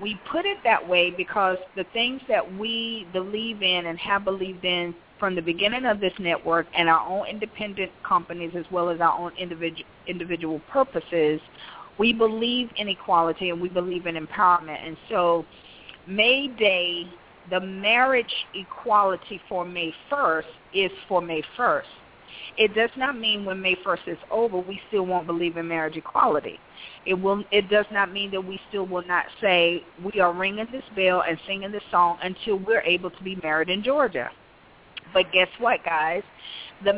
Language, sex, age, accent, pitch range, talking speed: English, female, 40-59, American, 170-210 Hz, 175 wpm